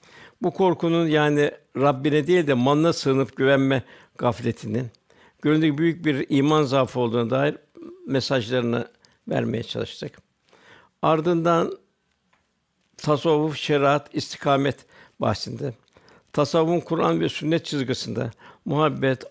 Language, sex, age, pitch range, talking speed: Turkish, male, 60-79, 130-160 Hz, 95 wpm